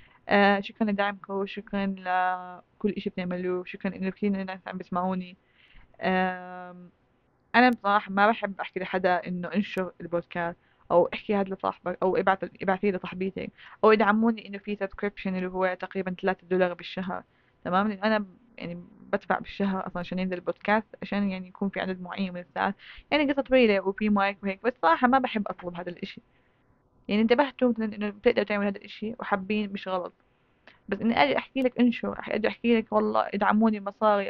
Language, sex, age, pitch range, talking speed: Arabic, female, 20-39, 185-215 Hz, 165 wpm